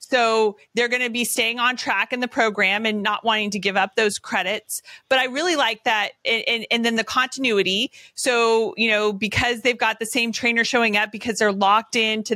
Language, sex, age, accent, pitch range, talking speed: English, female, 30-49, American, 205-240 Hz, 225 wpm